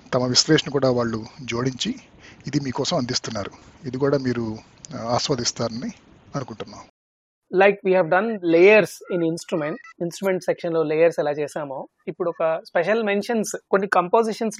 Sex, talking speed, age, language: male, 50 wpm, 30-49, Telugu